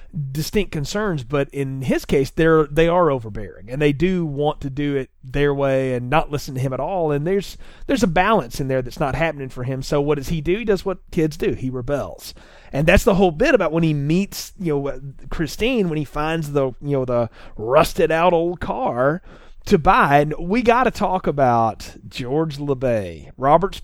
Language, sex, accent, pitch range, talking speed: English, male, American, 135-190 Hz, 210 wpm